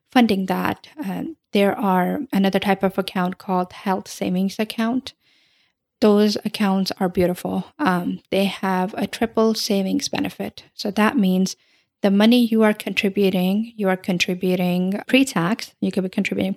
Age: 10-29